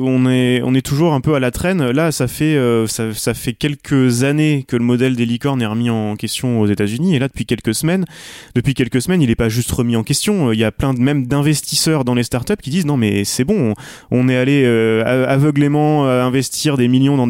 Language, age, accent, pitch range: French, 30-49, French, 115-140 Hz